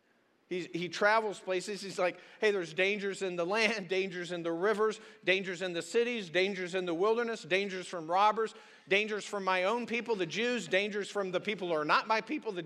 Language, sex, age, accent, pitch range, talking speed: English, male, 50-69, American, 185-235 Hz, 210 wpm